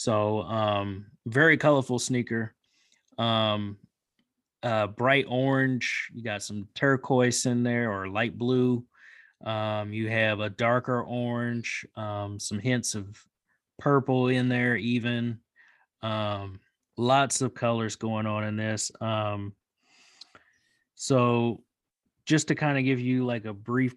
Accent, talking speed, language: American, 130 wpm, English